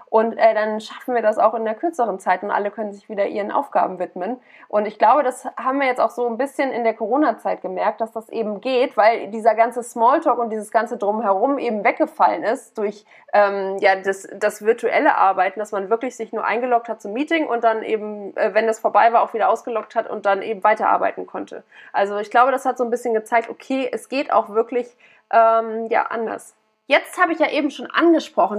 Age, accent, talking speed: 20-39, German, 220 wpm